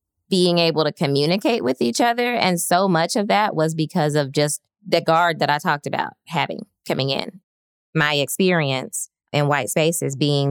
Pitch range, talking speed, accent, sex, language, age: 140-185 Hz, 175 wpm, American, female, English, 20-39